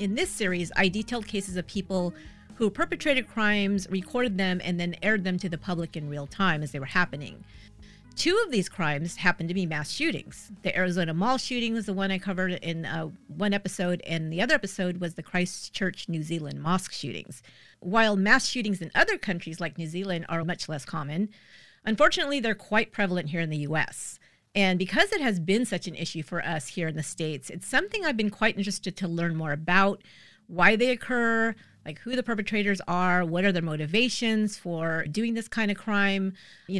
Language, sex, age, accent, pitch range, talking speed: English, female, 40-59, American, 170-210 Hz, 200 wpm